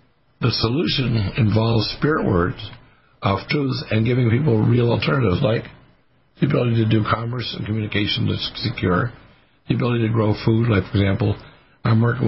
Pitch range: 100-125 Hz